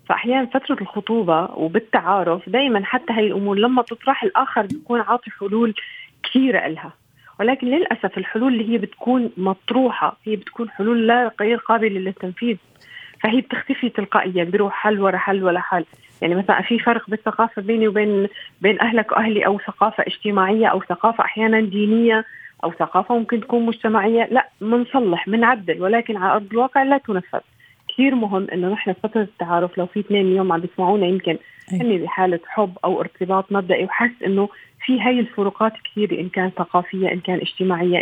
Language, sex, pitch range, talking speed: Arabic, female, 190-240 Hz, 160 wpm